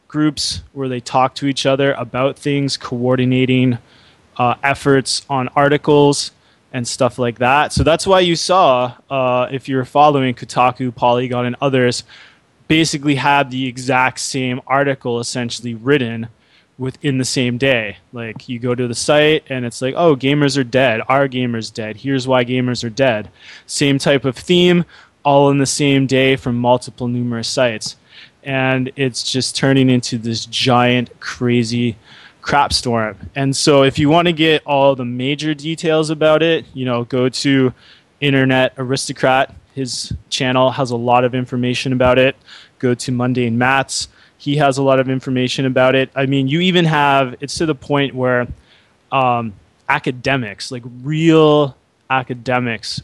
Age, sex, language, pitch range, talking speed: 20-39, male, English, 125-140 Hz, 160 wpm